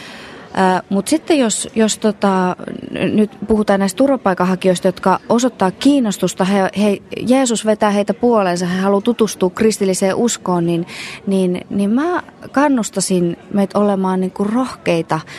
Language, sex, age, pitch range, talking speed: Finnish, female, 30-49, 175-220 Hz, 135 wpm